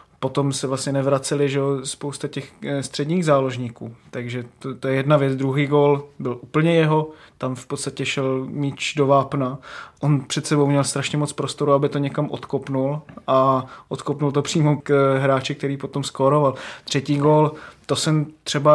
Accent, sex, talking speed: native, male, 175 wpm